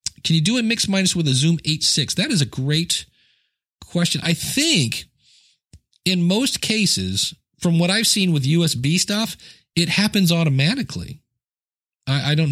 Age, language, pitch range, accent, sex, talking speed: 40-59, English, 125-170 Hz, American, male, 160 wpm